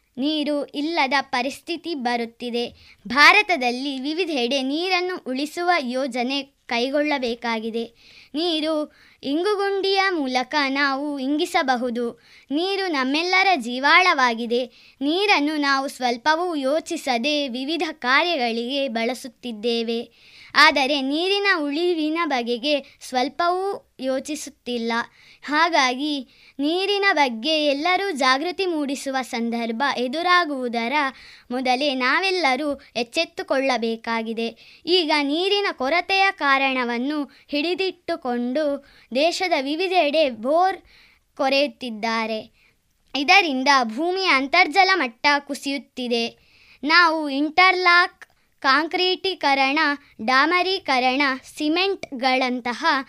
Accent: native